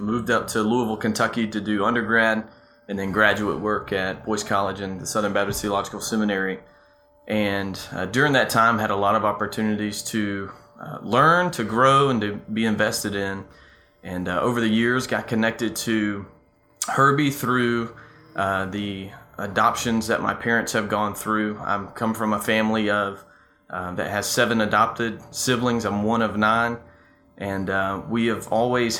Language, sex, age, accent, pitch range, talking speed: English, male, 20-39, American, 100-115 Hz, 170 wpm